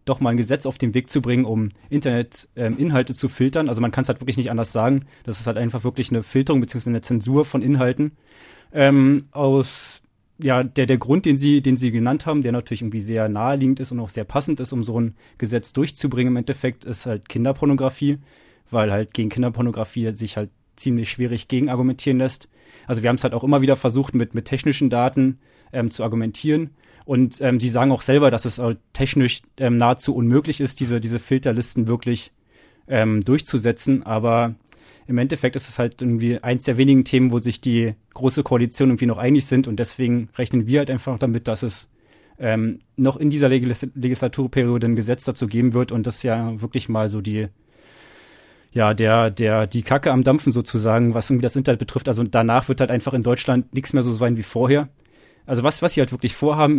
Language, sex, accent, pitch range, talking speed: German, male, German, 115-135 Hz, 205 wpm